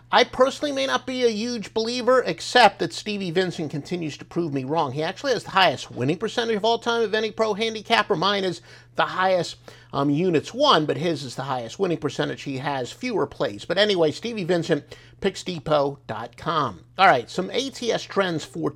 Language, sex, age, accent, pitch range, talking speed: English, male, 50-69, American, 145-220 Hz, 190 wpm